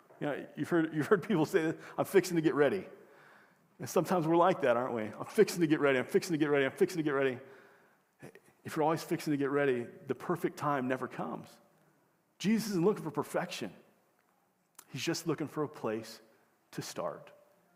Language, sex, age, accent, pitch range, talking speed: English, male, 40-59, American, 135-165 Hz, 205 wpm